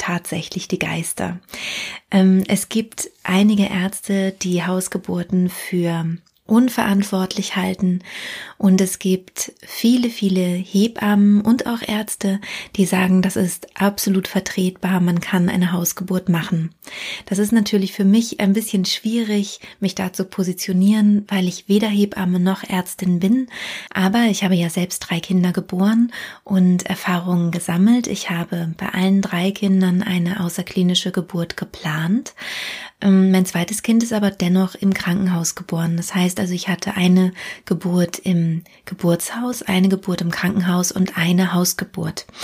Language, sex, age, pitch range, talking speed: German, female, 30-49, 180-200 Hz, 135 wpm